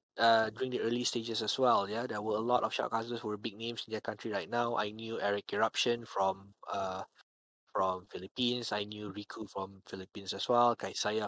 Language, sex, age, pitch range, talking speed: English, male, 20-39, 105-120 Hz, 210 wpm